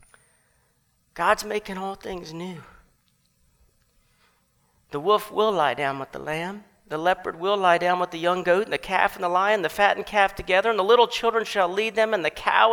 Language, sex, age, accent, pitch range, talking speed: English, male, 50-69, American, 180-220 Hz, 200 wpm